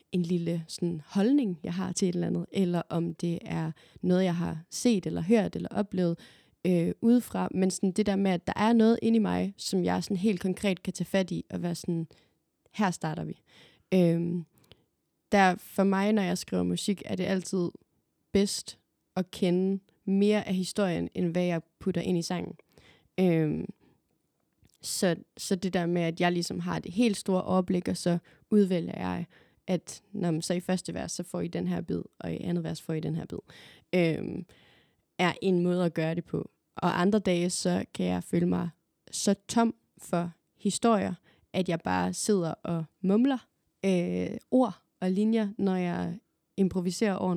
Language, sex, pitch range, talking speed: Danish, female, 170-200 Hz, 185 wpm